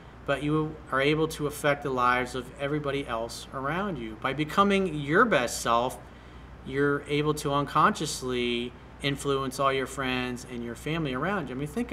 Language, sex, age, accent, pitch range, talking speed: English, male, 40-59, American, 130-165 Hz, 170 wpm